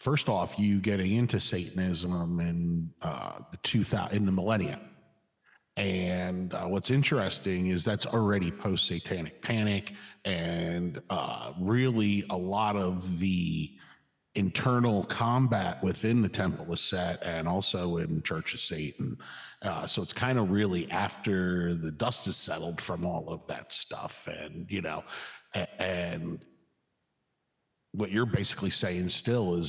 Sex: male